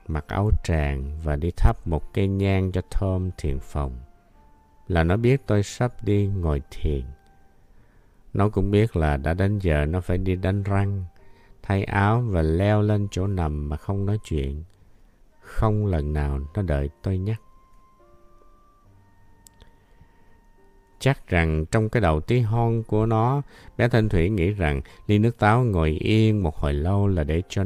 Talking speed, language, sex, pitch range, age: 165 wpm, Vietnamese, male, 80-110 Hz, 50-69